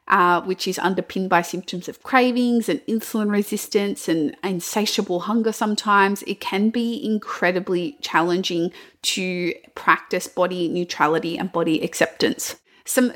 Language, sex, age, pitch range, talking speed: English, female, 30-49, 175-215 Hz, 130 wpm